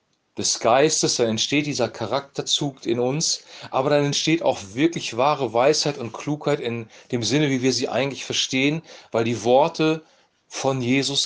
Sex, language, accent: male, German, German